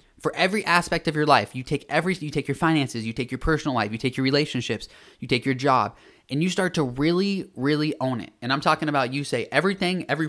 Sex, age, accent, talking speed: male, 20-39, American, 245 wpm